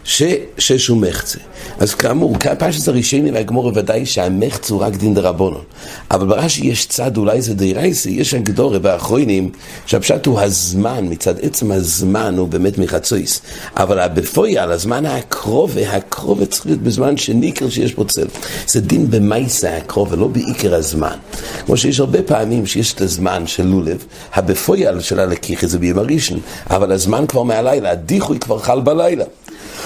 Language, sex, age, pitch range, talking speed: English, male, 60-79, 95-125 Hz, 110 wpm